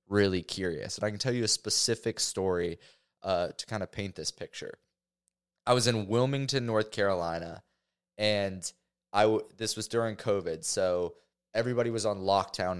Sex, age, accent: male, 20-39, American